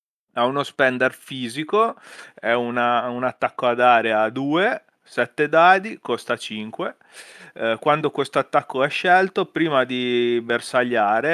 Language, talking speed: Italian, 125 wpm